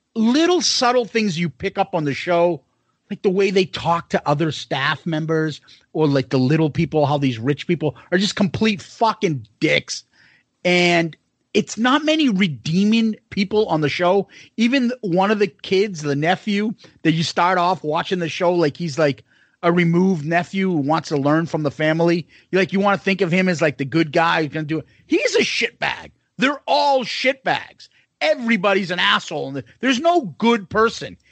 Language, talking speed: English, 190 wpm